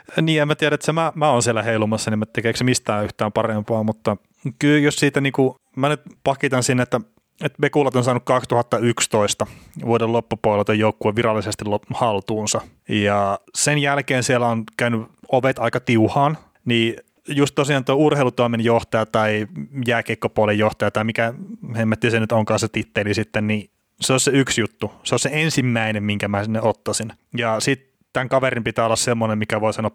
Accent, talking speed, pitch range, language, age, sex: native, 180 wpm, 110-130 Hz, Finnish, 30-49, male